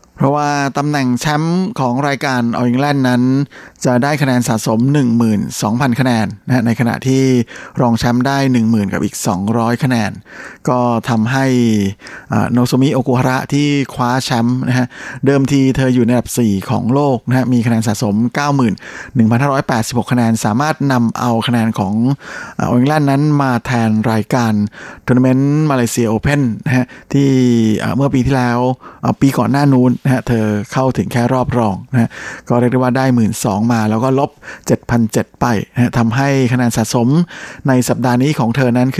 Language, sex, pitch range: Thai, male, 115-135 Hz